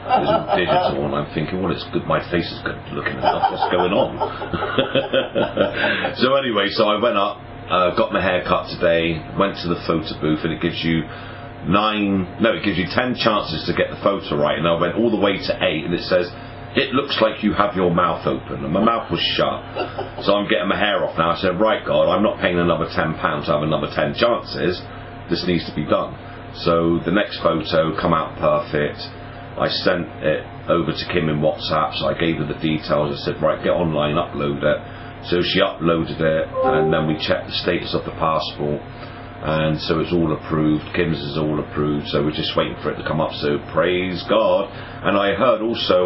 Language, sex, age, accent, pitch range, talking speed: English, male, 40-59, British, 80-105 Hz, 220 wpm